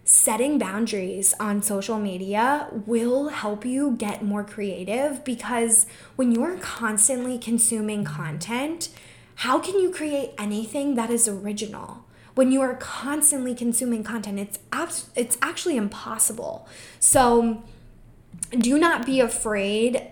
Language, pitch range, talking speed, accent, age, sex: English, 200-235 Hz, 125 wpm, American, 10-29, female